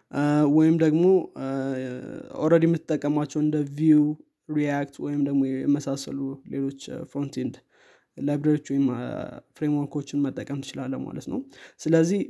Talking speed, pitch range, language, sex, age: 100 wpm, 140-155 Hz, Amharic, male, 20-39